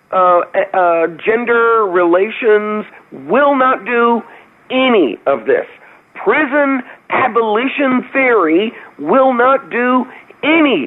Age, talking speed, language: 50-69, 95 wpm, English